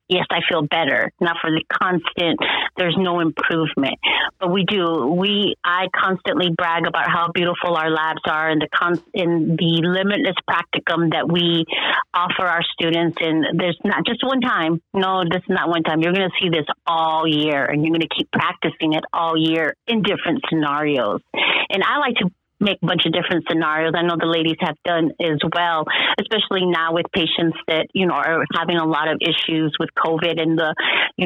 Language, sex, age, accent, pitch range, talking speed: English, female, 40-59, American, 160-180 Hz, 195 wpm